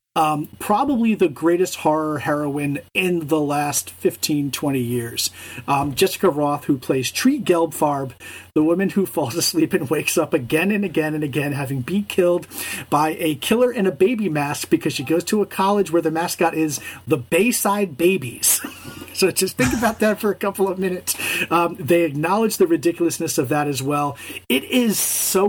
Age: 40-59